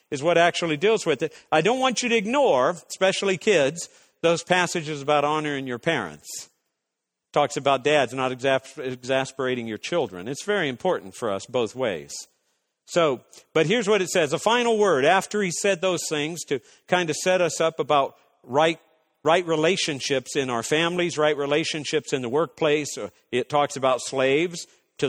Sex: male